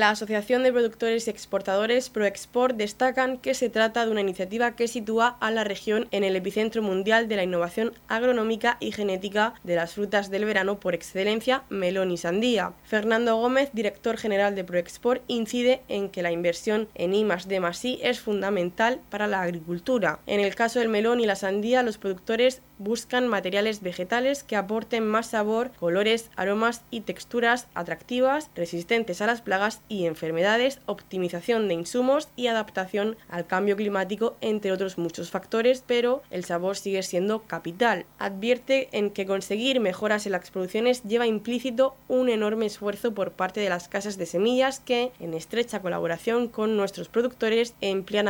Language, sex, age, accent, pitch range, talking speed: Spanish, female, 20-39, Spanish, 190-235 Hz, 170 wpm